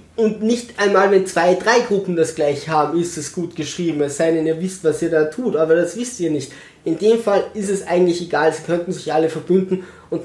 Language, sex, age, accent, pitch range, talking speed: German, male, 20-39, German, 150-200 Hz, 240 wpm